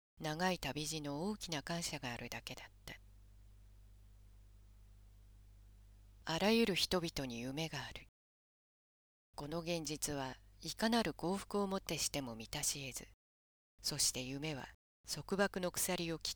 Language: Japanese